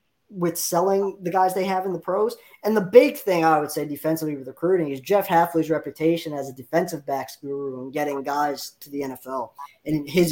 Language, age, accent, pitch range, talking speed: English, 20-39, American, 145-185 Hz, 210 wpm